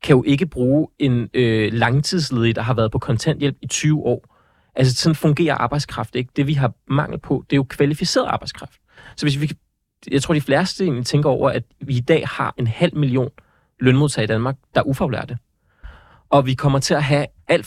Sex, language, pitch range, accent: male, Danish, 120-150 Hz, native